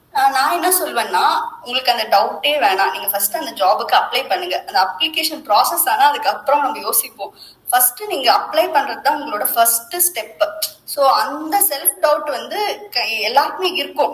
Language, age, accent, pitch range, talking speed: Tamil, 20-39, native, 235-335 Hz, 65 wpm